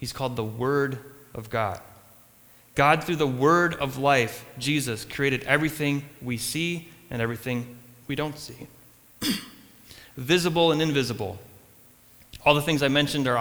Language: English